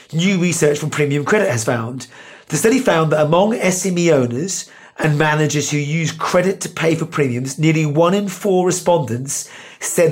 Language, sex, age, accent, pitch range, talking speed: English, male, 40-59, British, 140-180 Hz, 170 wpm